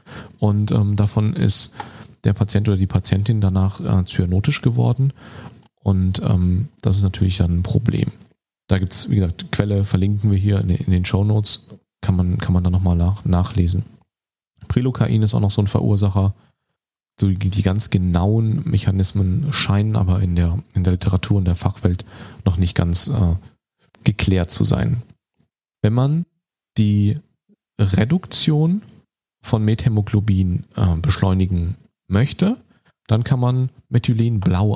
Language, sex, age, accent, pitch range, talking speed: German, male, 40-59, German, 95-115 Hz, 140 wpm